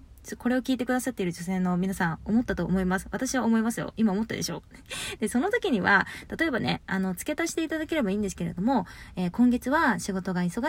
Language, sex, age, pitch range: Japanese, female, 20-39, 190-255 Hz